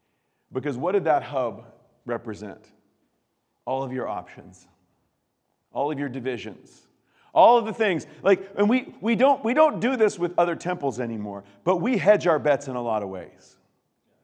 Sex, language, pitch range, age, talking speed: male, English, 135-225 Hz, 40-59, 175 wpm